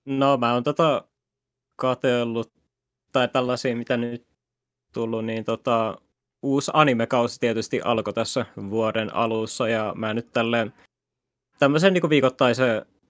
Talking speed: 115 wpm